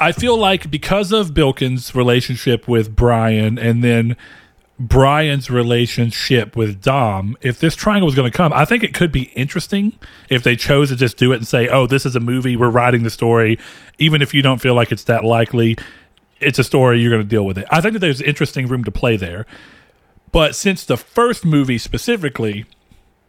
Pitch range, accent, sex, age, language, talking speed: 115-145 Hz, American, male, 40-59, English, 205 wpm